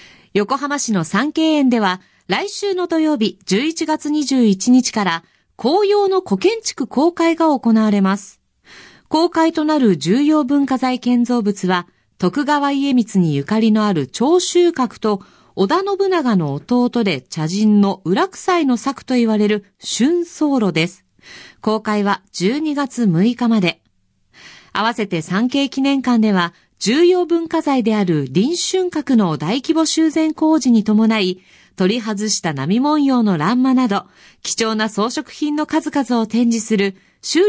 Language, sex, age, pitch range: Japanese, female, 40-59, 195-305 Hz